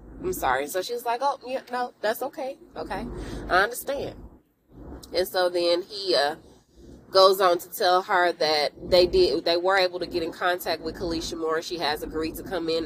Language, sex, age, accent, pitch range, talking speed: English, female, 20-39, American, 175-235 Hz, 195 wpm